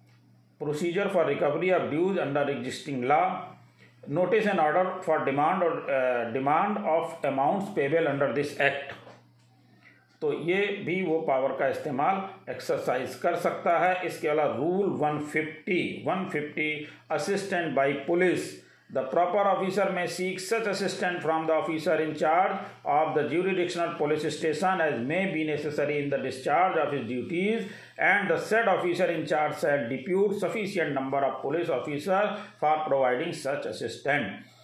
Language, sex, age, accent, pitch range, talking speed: Hindi, male, 50-69, native, 140-185 Hz, 145 wpm